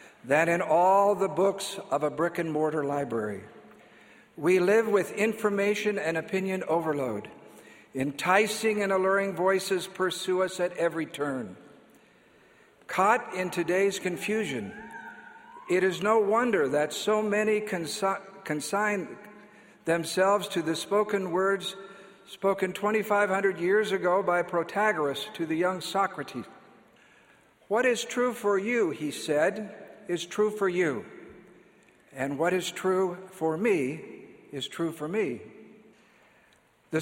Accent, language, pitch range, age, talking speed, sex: American, English, 165-205 Hz, 60-79, 120 wpm, male